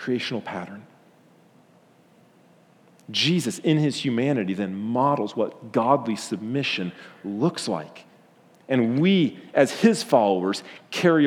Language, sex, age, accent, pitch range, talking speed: English, male, 40-59, American, 100-135 Hz, 100 wpm